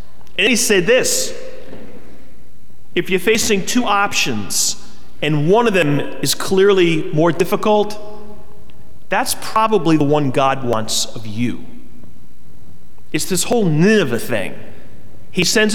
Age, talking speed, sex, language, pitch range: 30-49, 120 wpm, male, English, 140-215 Hz